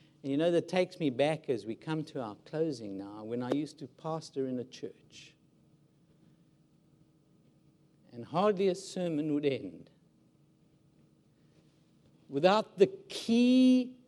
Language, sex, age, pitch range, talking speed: English, male, 60-79, 150-195 Hz, 130 wpm